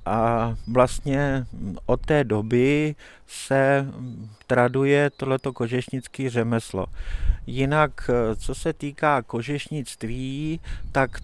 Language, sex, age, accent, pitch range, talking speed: Czech, male, 50-69, native, 115-145 Hz, 85 wpm